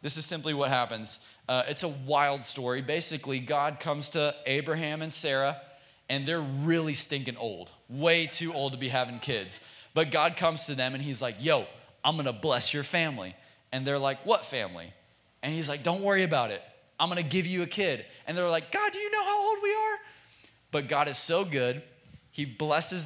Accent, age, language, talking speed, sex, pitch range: American, 20-39, English, 205 wpm, male, 120-160 Hz